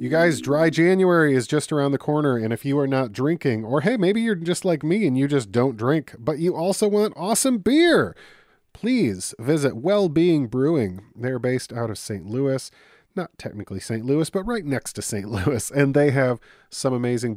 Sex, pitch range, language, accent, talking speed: male, 105-145 Hz, English, American, 200 wpm